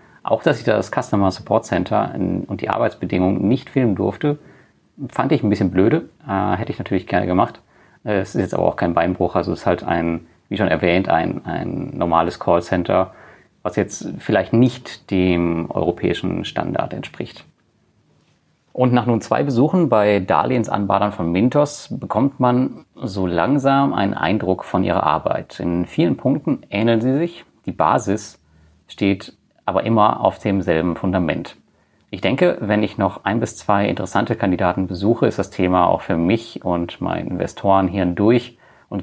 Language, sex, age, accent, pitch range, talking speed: German, male, 30-49, German, 90-110 Hz, 160 wpm